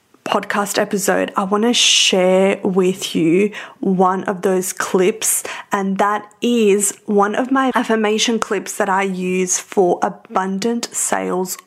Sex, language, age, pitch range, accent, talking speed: female, English, 20-39, 190-215 Hz, Australian, 135 wpm